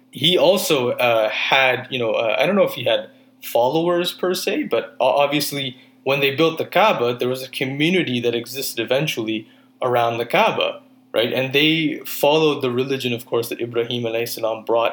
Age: 20-39